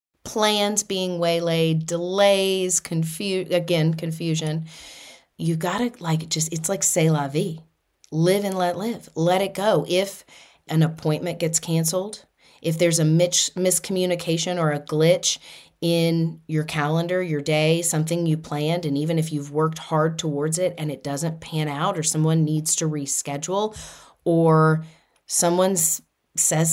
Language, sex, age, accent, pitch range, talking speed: English, female, 30-49, American, 160-185 Hz, 150 wpm